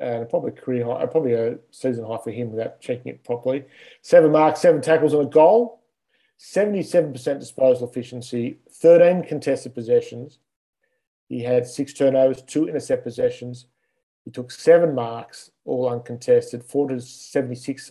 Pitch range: 125-155 Hz